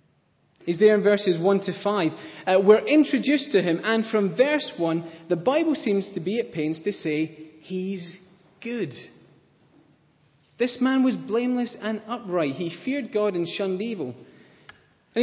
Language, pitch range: English, 170-245 Hz